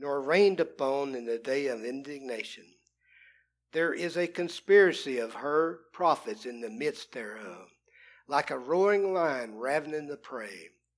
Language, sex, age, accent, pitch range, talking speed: English, male, 60-79, American, 130-195 Hz, 140 wpm